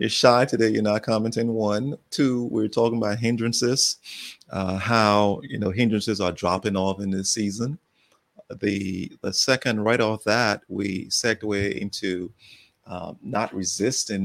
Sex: male